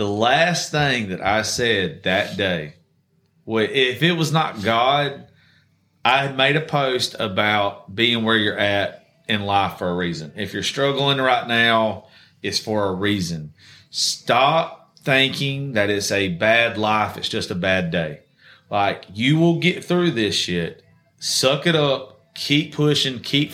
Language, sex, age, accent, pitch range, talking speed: English, male, 30-49, American, 105-145 Hz, 160 wpm